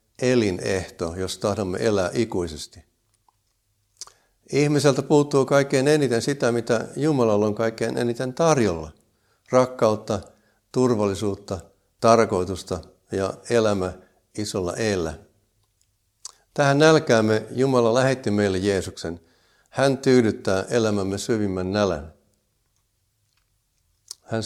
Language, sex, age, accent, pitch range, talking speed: Finnish, male, 60-79, native, 100-120 Hz, 85 wpm